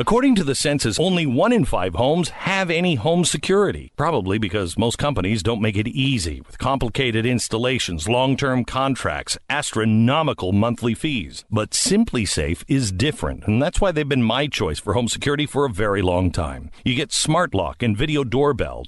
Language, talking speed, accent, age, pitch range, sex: English, 180 wpm, American, 50-69, 110-170 Hz, male